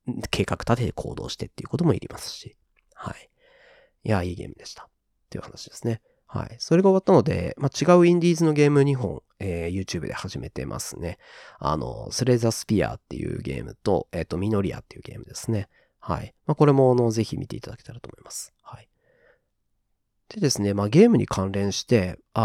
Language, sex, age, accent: Japanese, male, 30-49, native